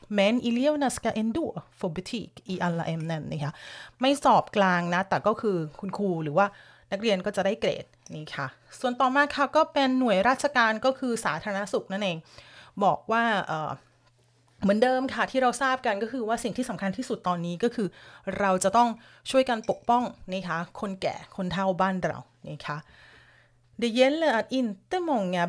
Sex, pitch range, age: female, 175-240 Hz, 30-49